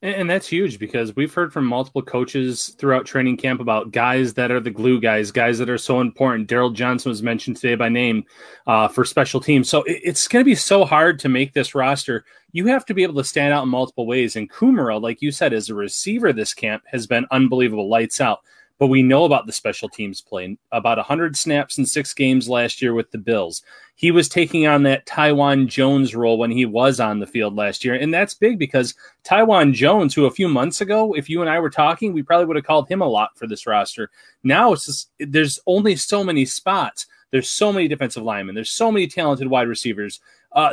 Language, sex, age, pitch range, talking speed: English, male, 30-49, 125-160 Hz, 230 wpm